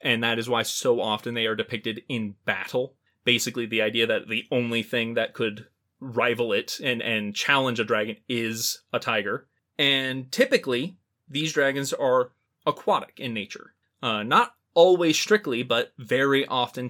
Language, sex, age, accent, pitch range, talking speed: English, male, 20-39, American, 115-130 Hz, 160 wpm